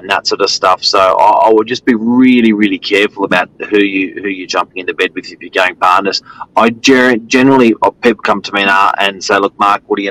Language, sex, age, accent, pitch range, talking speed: English, male, 30-49, Australian, 100-130 Hz, 255 wpm